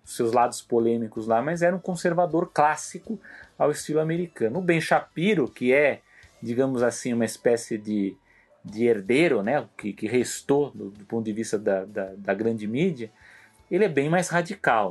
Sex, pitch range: male, 110-145 Hz